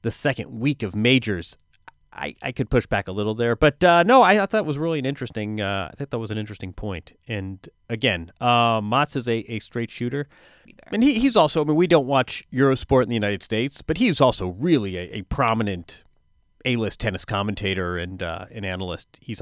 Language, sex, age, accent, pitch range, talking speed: English, male, 30-49, American, 105-140 Hz, 215 wpm